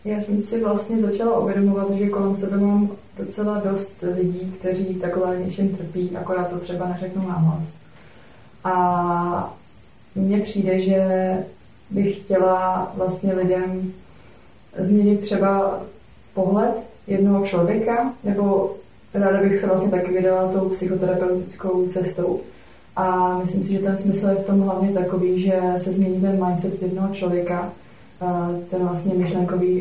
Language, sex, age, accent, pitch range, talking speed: Czech, female, 20-39, native, 175-190 Hz, 135 wpm